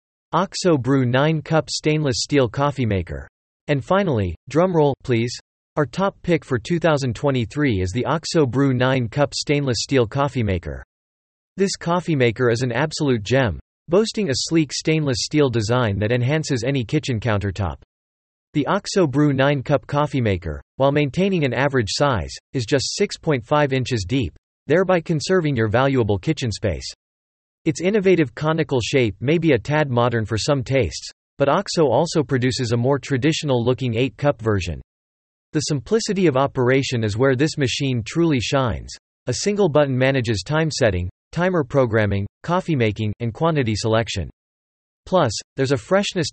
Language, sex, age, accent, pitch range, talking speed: English, male, 40-59, American, 110-155 Hz, 145 wpm